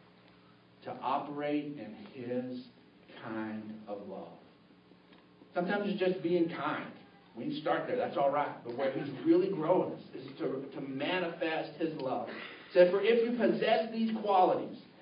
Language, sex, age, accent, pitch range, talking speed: English, male, 50-69, American, 155-230 Hz, 155 wpm